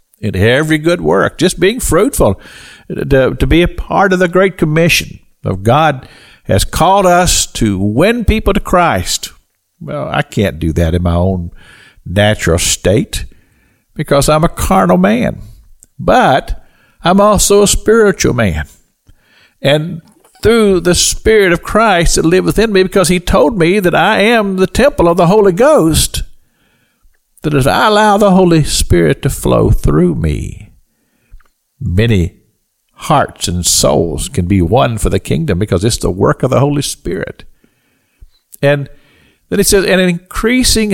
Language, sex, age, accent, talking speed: English, male, 50-69, American, 150 wpm